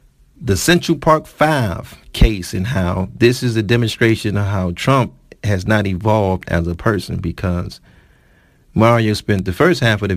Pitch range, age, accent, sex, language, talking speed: 90-120 Hz, 40-59, American, male, English, 165 wpm